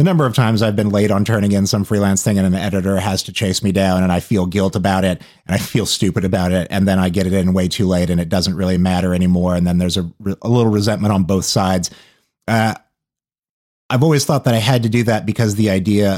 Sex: male